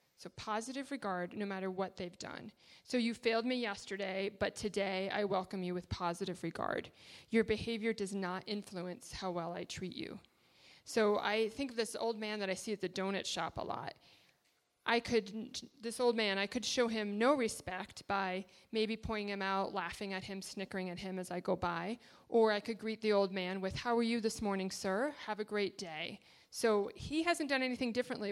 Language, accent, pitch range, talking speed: English, American, 195-230 Hz, 205 wpm